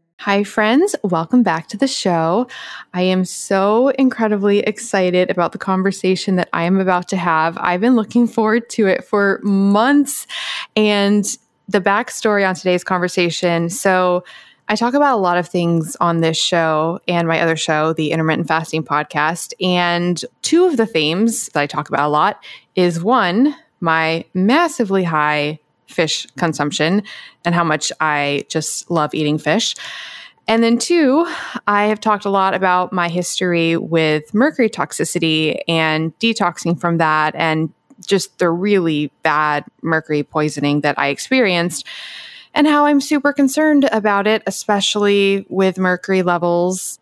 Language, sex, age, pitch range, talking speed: English, female, 20-39, 165-215 Hz, 150 wpm